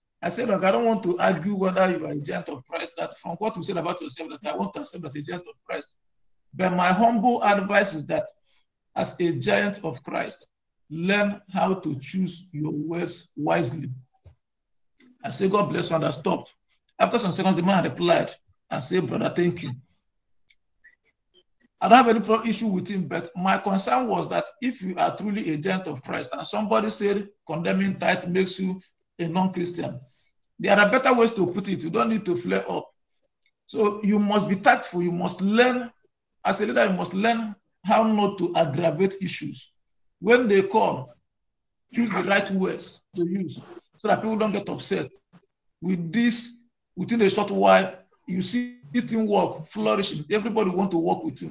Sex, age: male, 50-69